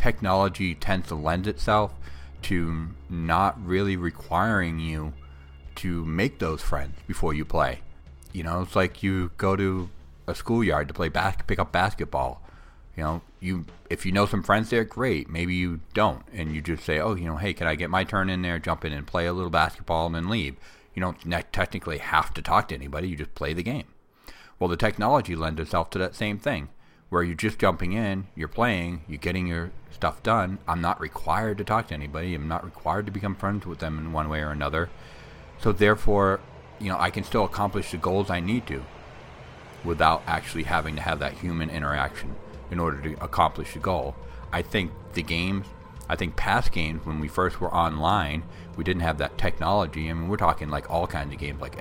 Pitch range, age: 75-95 Hz, 40-59